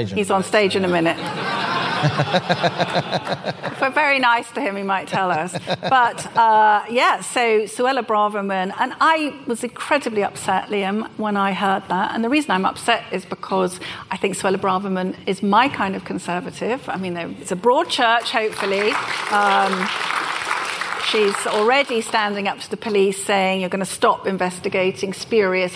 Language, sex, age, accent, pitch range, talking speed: English, female, 40-59, British, 185-230 Hz, 165 wpm